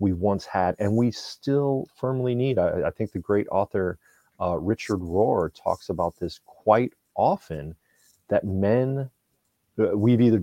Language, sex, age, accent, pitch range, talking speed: English, male, 30-49, American, 90-110 Hz, 150 wpm